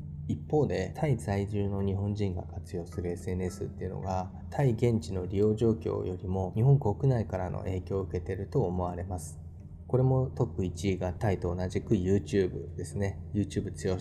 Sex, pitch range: male, 90-115 Hz